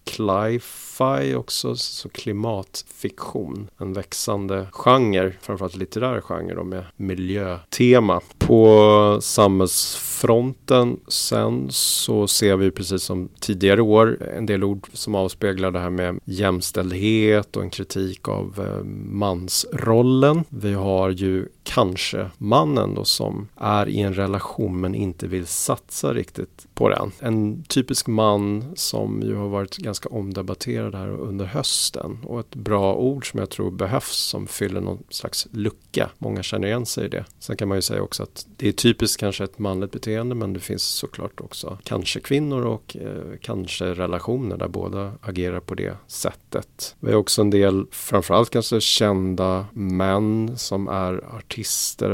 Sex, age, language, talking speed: male, 30-49, Swedish, 150 wpm